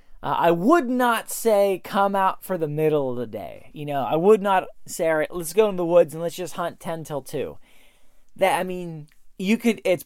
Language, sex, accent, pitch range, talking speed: English, male, American, 155-195 Hz, 235 wpm